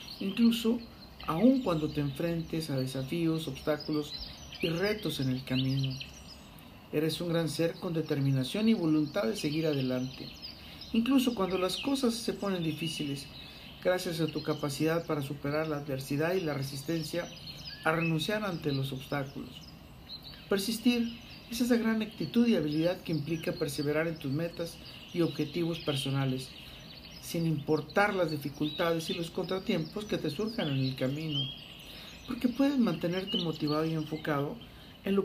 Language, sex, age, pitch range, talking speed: Spanish, male, 50-69, 150-190 Hz, 145 wpm